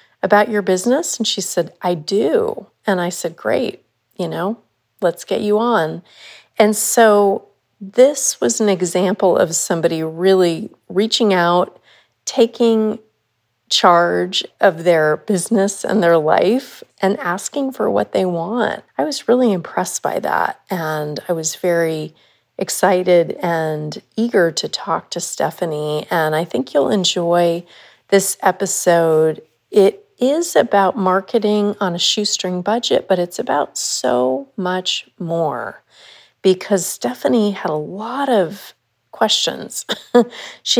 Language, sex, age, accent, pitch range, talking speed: English, female, 40-59, American, 175-220 Hz, 130 wpm